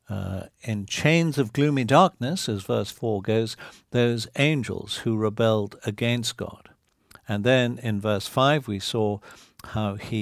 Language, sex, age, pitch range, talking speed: English, male, 60-79, 105-130 Hz, 145 wpm